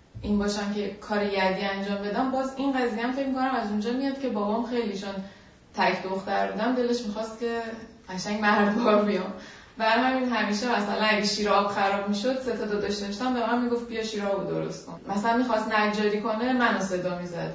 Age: 20-39